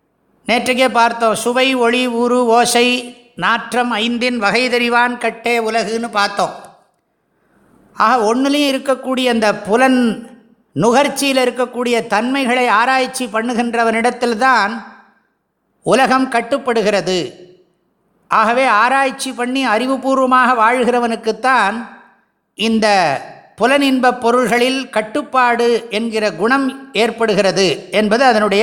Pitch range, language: 215-250 Hz, English